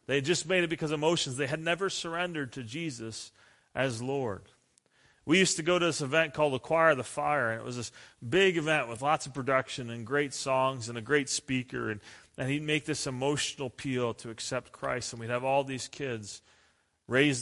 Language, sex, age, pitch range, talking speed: English, male, 40-59, 115-135 Hz, 215 wpm